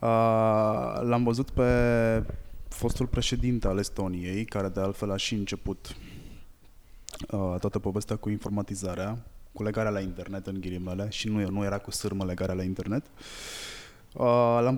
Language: Romanian